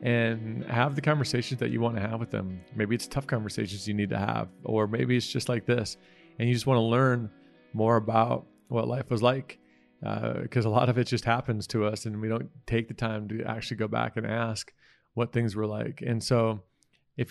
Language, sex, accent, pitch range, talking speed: English, male, American, 105-120 Hz, 230 wpm